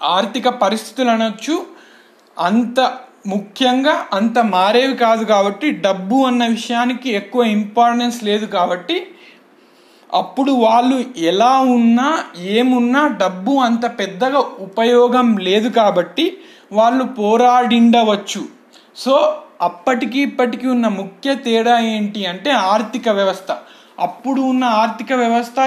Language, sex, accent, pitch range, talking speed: Telugu, male, native, 215-255 Hz, 100 wpm